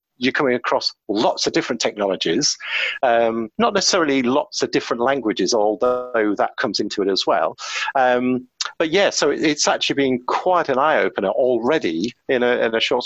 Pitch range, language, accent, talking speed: 115-155 Hz, English, British, 170 wpm